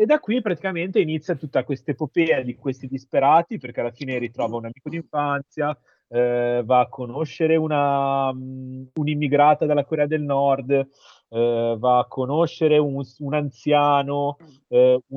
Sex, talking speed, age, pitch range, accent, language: male, 140 wpm, 30-49, 120-150 Hz, native, Italian